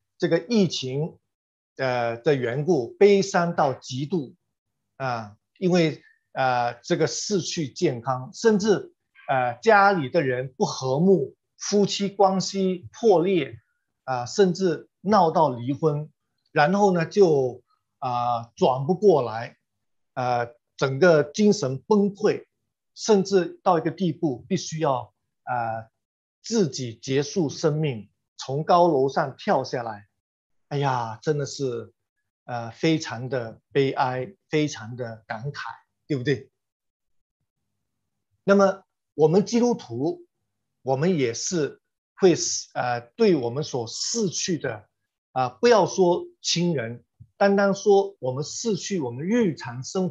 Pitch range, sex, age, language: 125-195 Hz, male, 50-69, Chinese